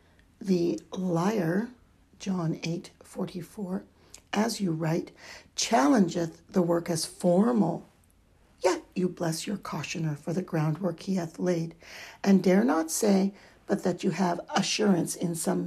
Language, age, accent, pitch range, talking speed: English, 60-79, American, 170-205 Hz, 140 wpm